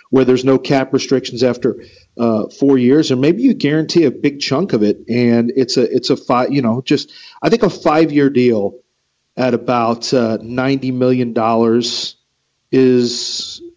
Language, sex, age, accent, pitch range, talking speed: English, male, 40-59, American, 120-145 Hz, 175 wpm